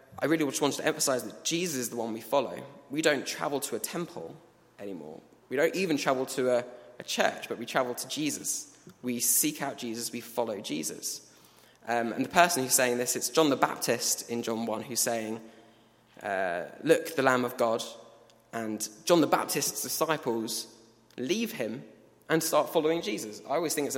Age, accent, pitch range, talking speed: 20-39, British, 115-140 Hz, 195 wpm